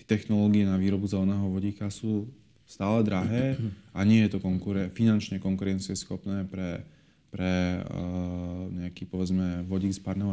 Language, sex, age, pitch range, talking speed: Slovak, male, 30-49, 95-110 Hz, 135 wpm